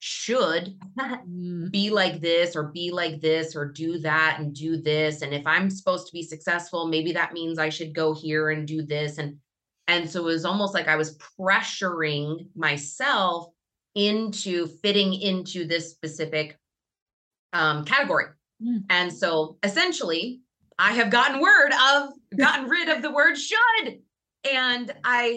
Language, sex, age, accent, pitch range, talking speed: English, female, 20-39, American, 160-210 Hz, 155 wpm